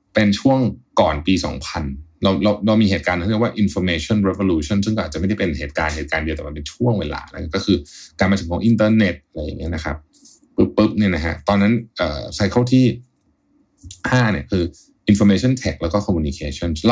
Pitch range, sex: 80-110 Hz, male